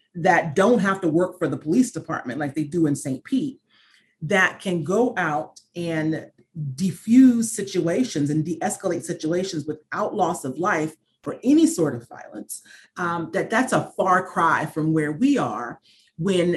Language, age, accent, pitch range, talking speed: English, 40-59, American, 160-210 Hz, 165 wpm